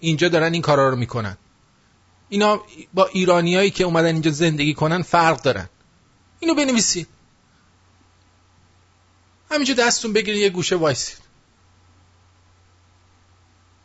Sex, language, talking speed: male, English, 105 wpm